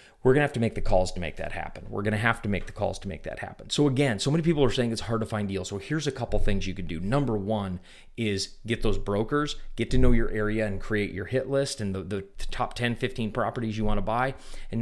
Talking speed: 280 wpm